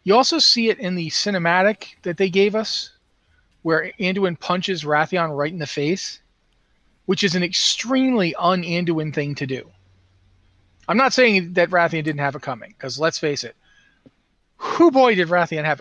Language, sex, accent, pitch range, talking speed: English, male, American, 155-195 Hz, 170 wpm